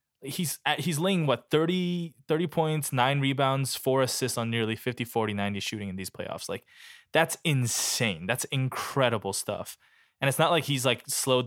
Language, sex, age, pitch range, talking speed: English, male, 10-29, 105-135 Hz, 180 wpm